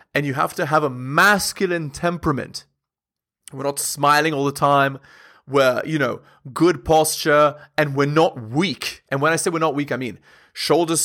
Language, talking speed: English, 180 wpm